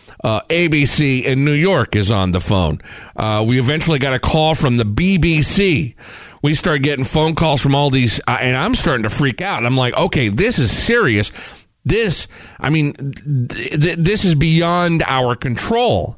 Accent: American